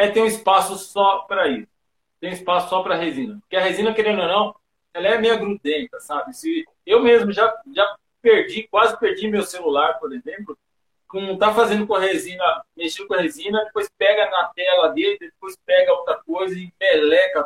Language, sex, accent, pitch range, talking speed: Portuguese, male, Brazilian, 170-230 Hz, 195 wpm